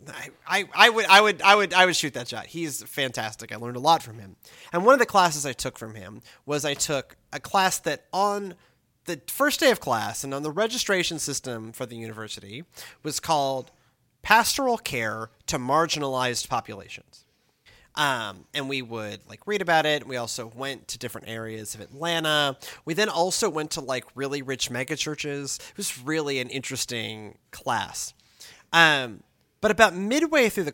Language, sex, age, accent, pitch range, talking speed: English, male, 30-49, American, 125-195 Hz, 185 wpm